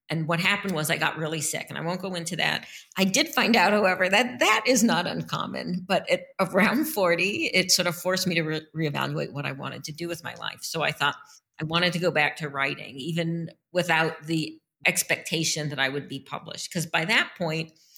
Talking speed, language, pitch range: 220 wpm, English, 150-180 Hz